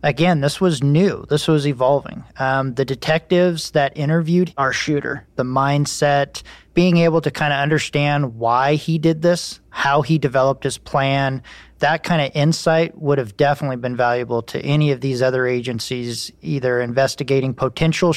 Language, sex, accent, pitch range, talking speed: English, male, American, 125-145 Hz, 160 wpm